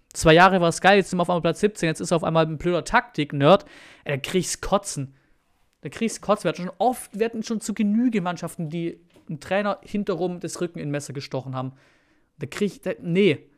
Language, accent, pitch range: German, German, 170-230 Hz